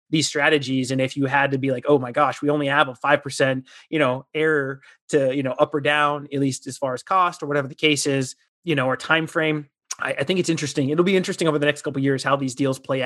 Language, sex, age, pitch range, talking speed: English, male, 30-49, 135-155 Hz, 270 wpm